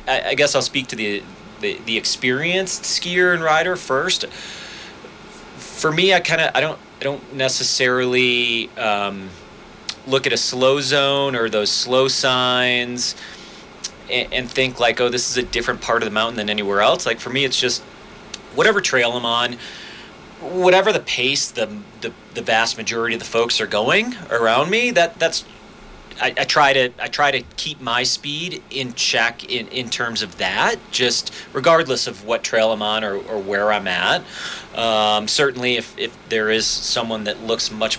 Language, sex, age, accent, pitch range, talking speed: English, male, 30-49, American, 110-140 Hz, 180 wpm